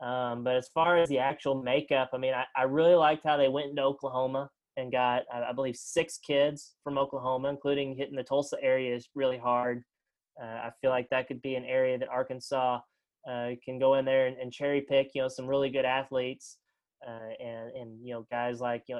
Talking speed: 220 wpm